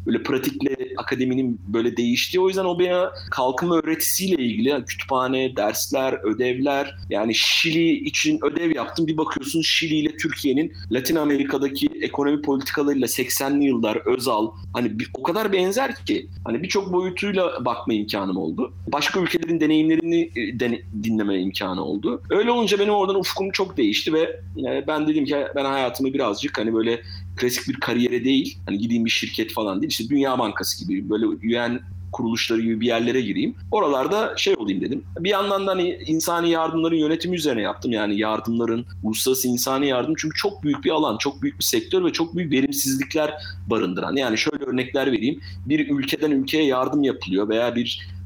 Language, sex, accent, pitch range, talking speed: Turkish, male, native, 115-175 Hz, 165 wpm